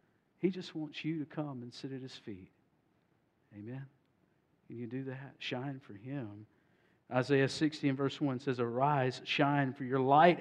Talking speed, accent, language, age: 175 wpm, American, English, 50-69